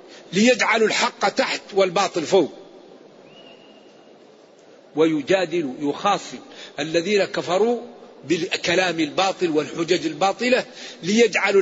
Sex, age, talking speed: male, 50-69, 70 wpm